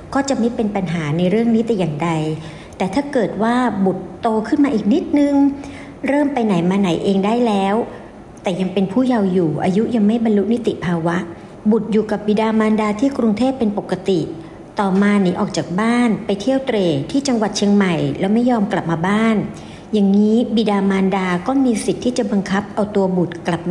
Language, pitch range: Thai, 190-240 Hz